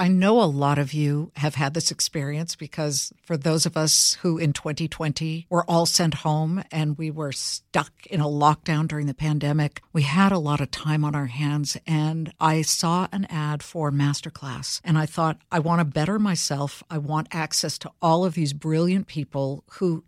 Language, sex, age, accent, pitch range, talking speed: English, female, 60-79, American, 155-190 Hz, 195 wpm